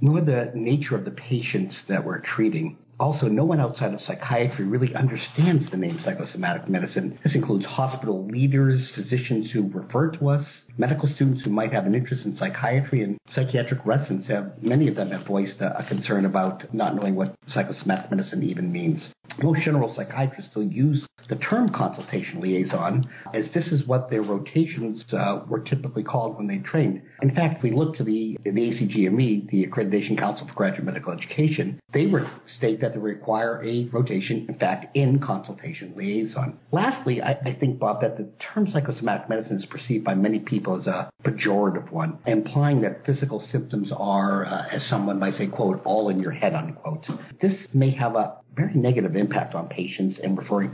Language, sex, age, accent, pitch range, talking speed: English, male, 50-69, American, 110-145 Hz, 185 wpm